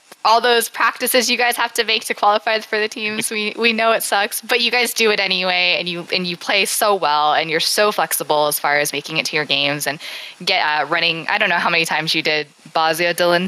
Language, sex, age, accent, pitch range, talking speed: English, female, 10-29, American, 155-200 Hz, 255 wpm